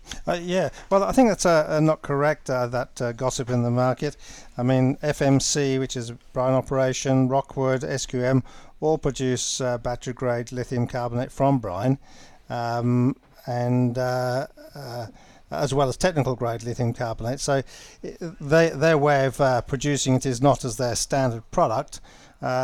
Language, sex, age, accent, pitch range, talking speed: English, male, 50-69, British, 125-140 Hz, 160 wpm